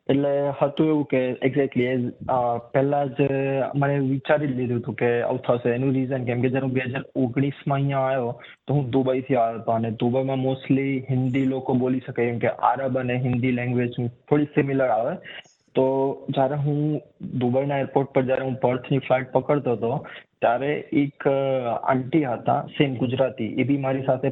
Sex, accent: male, native